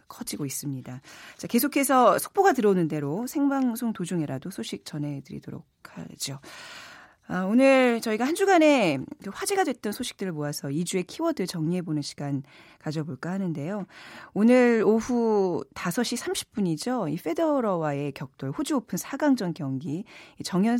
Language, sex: Korean, female